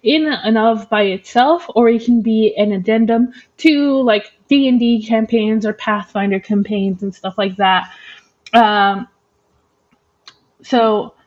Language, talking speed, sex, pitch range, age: English, 130 wpm, female, 200-250 Hz, 20-39